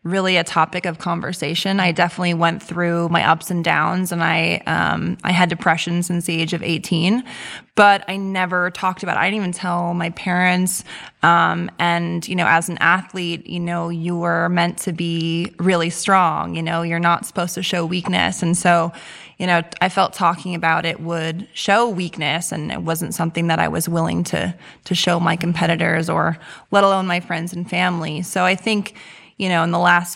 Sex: female